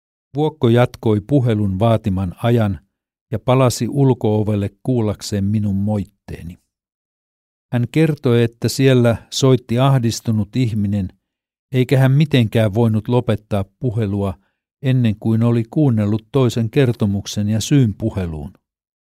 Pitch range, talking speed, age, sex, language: 100-120 Hz, 105 wpm, 60-79, male, Finnish